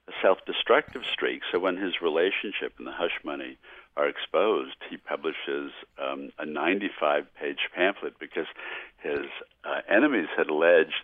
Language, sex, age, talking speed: English, male, 60-79, 140 wpm